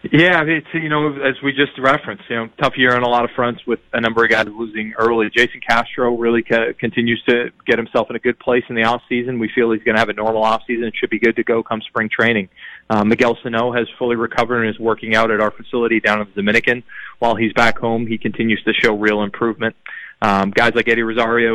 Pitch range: 110-120 Hz